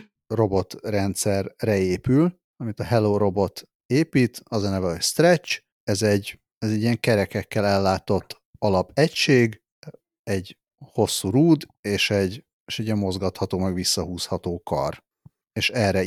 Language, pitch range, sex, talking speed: Hungarian, 95-125 Hz, male, 125 wpm